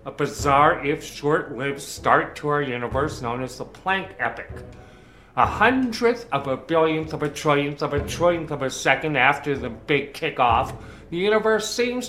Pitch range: 135-190 Hz